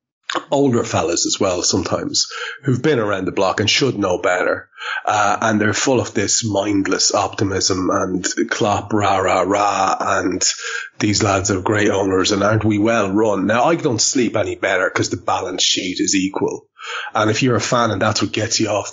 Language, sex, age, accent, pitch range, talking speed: English, male, 30-49, Irish, 105-165 Hz, 195 wpm